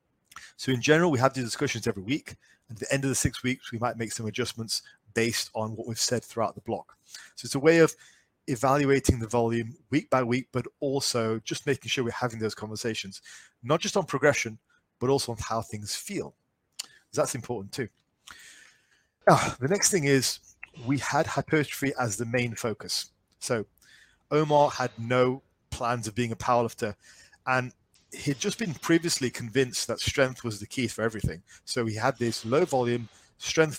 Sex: male